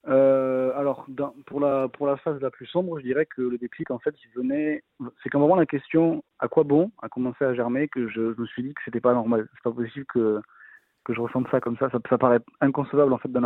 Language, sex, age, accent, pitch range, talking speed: French, male, 20-39, French, 115-140 Hz, 260 wpm